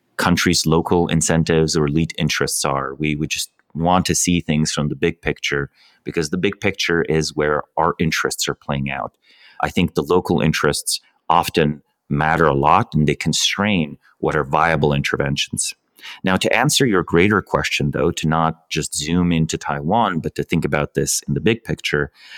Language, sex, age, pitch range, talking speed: English, male, 30-49, 75-90 Hz, 180 wpm